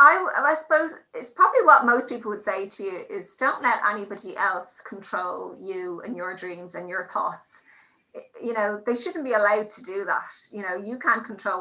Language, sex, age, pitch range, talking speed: English, female, 30-49, 195-245 Hz, 200 wpm